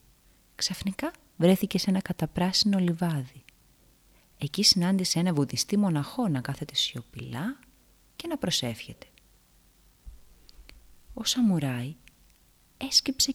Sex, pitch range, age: female, 130-220 Hz, 30-49